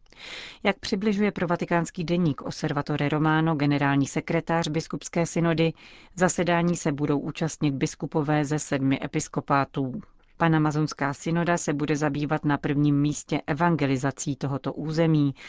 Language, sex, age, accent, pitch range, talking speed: Czech, female, 40-59, native, 145-170 Hz, 115 wpm